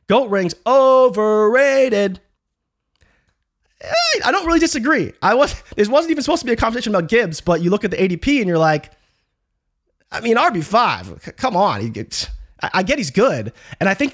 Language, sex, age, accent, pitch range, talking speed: English, male, 20-39, American, 140-210 Hz, 170 wpm